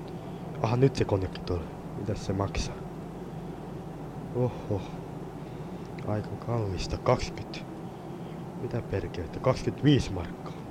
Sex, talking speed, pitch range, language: male, 85 wpm, 115-165 Hz, Finnish